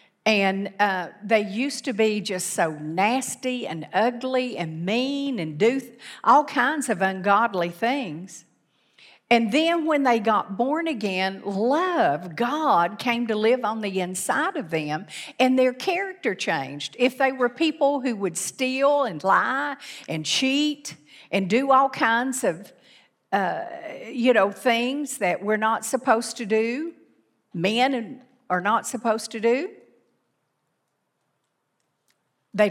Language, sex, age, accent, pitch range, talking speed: English, female, 50-69, American, 185-250 Hz, 135 wpm